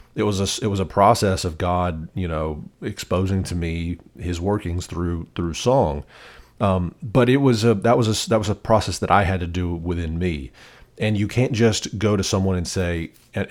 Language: English